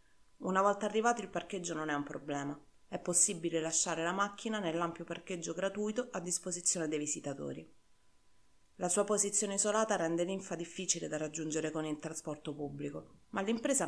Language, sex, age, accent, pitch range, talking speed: Italian, female, 30-49, native, 155-200 Hz, 155 wpm